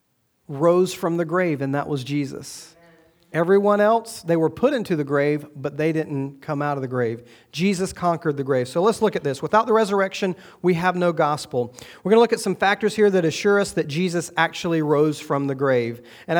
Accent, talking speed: American, 215 wpm